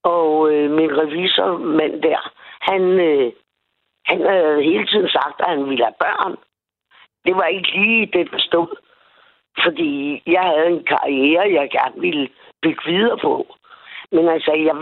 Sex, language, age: female, Danish, 60-79